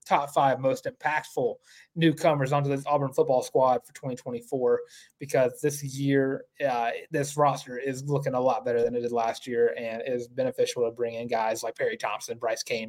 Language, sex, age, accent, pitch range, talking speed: English, male, 20-39, American, 125-165 Hz, 185 wpm